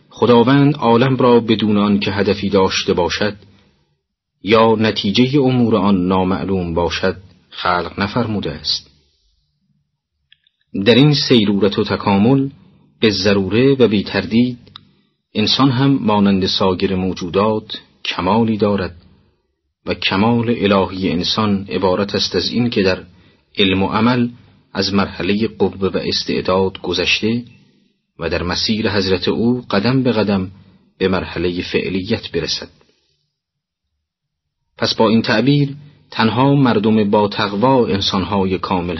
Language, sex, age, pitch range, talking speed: Persian, male, 40-59, 95-115 Hz, 115 wpm